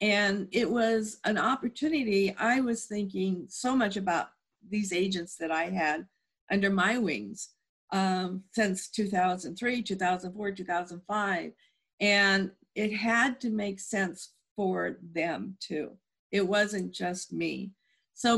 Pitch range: 185-210 Hz